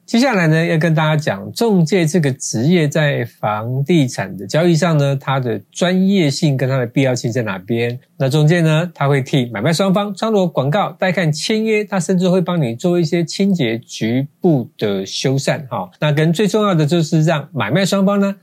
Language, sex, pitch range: Chinese, male, 135-180 Hz